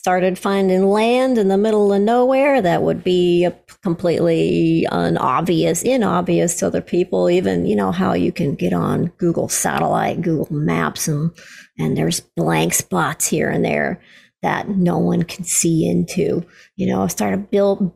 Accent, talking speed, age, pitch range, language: American, 160 wpm, 40-59, 165-200 Hz, English